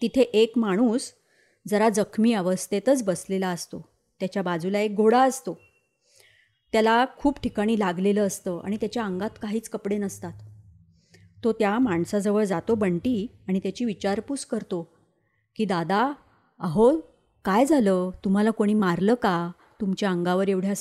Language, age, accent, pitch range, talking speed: Marathi, 30-49, native, 185-240 Hz, 135 wpm